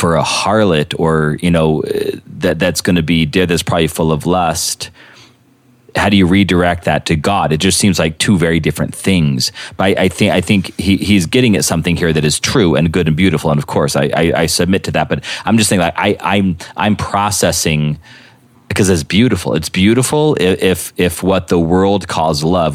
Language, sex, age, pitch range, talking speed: English, male, 30-49, 80-95 Hz, 215 wpm